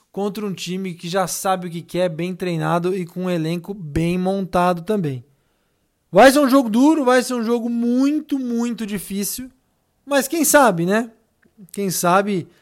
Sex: male